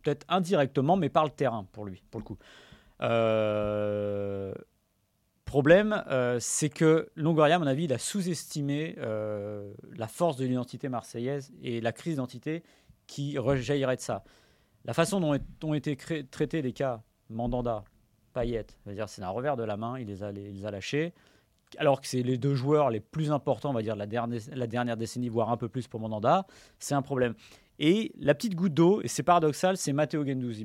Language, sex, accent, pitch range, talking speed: French, male, French, 115-160 Hz, 185 wpm